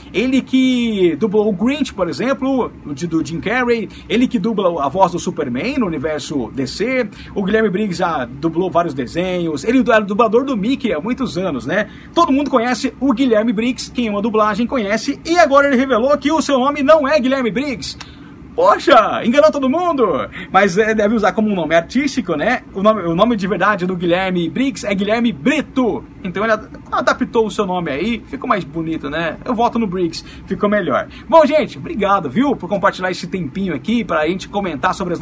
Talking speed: 195 wpm